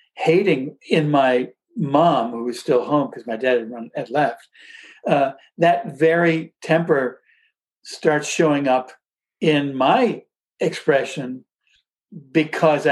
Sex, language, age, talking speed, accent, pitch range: male, English, 60-79, 120 wpm, American, 140-190 Hz